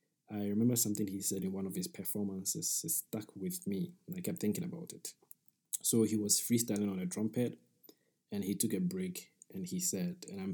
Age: 20-39